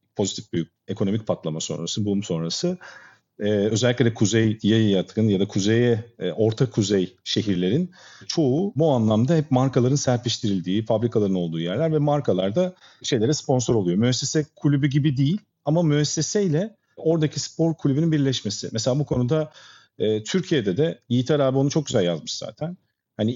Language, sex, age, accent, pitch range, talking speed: Turkish, male, 50-69, native, 110-150 Hz, 155 wpm